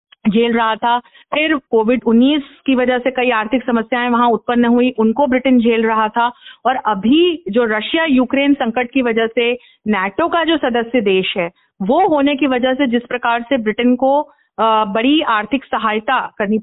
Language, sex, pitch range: Hindi, female, 230-300 Hz